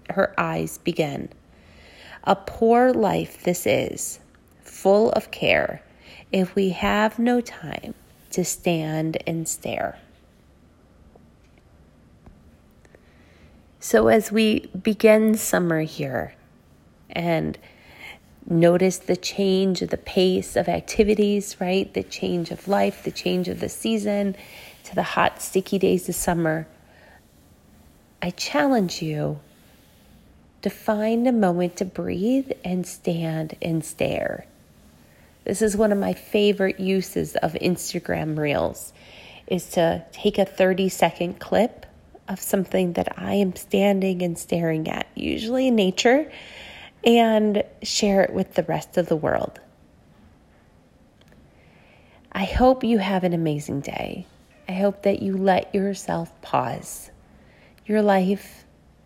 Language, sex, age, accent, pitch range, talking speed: English, female, 30-49, American, 140-205 Hz, 120 wpm